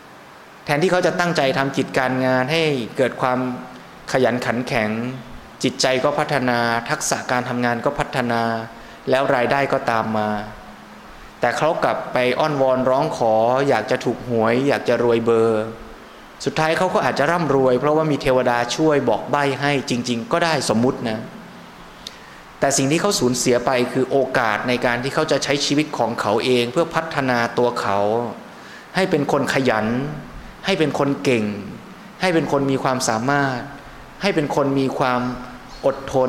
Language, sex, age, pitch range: Thai, male, 20-39, 120-150 Hz